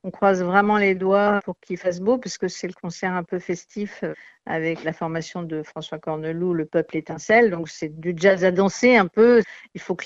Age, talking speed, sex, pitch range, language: 50-69, 215 wpm, female, 175-205 Hz, French